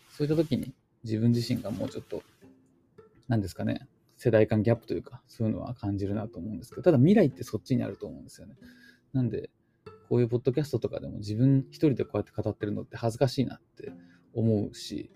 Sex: male